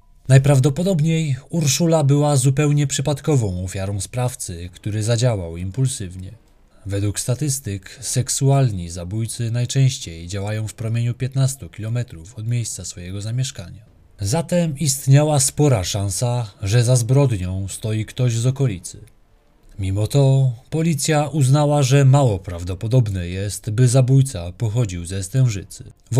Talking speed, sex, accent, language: 110 wpm, male, native, Polish